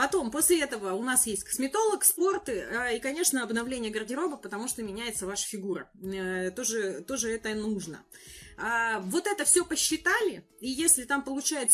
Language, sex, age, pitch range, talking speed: Russian, female, 20-39, 210-285 Hz, 150 wpm